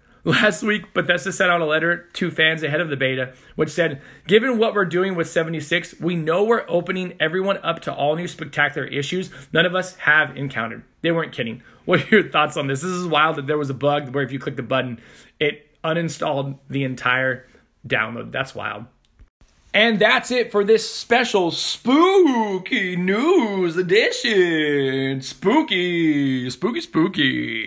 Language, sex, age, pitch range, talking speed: English, male, 20-39, 140-200 Hz, 170 wpm